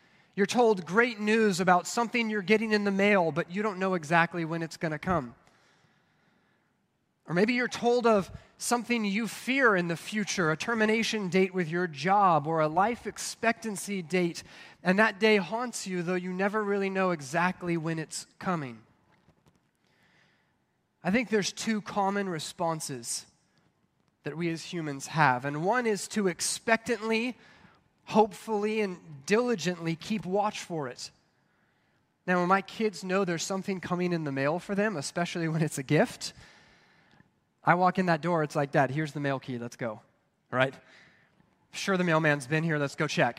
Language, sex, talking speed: English, male, 165 wpm